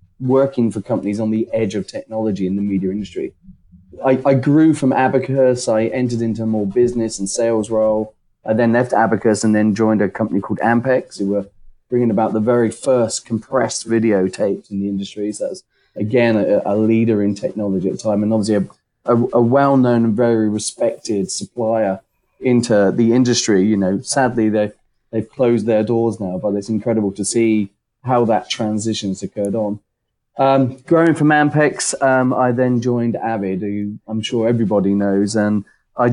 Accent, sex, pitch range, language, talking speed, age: British, male, 105-120 Hz, English, 180 wpm, 30-49